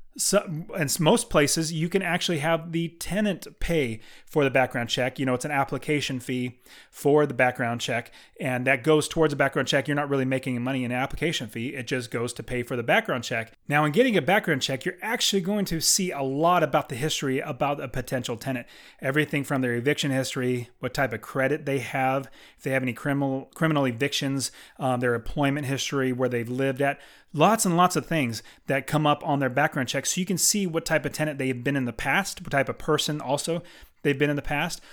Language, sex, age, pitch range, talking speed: English, male, 30-49, 130-160 Hz, 225 wpm